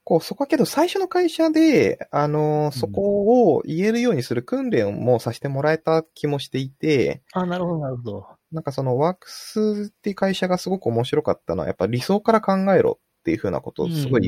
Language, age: Japanese, 20-39